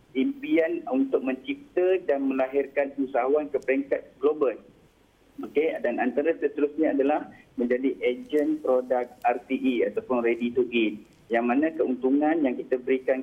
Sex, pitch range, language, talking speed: male, 125-180 Hz, Malay, 125 wpm